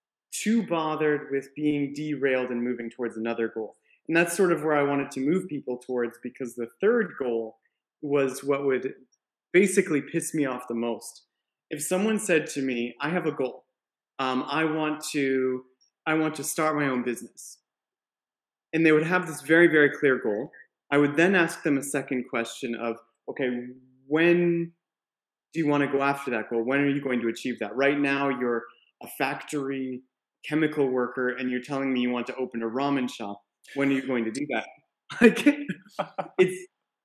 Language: English